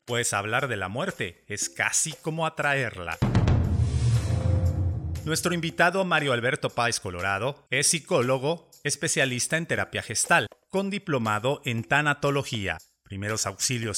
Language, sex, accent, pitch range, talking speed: Spanish, male, Mexican, 110-155 Hz, 115 wpm